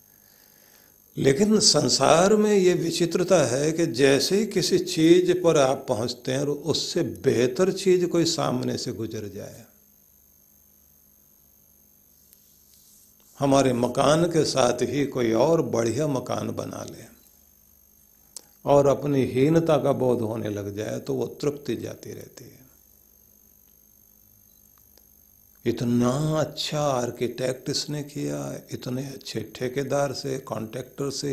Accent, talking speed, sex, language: native, 115 wpm, male, Hindi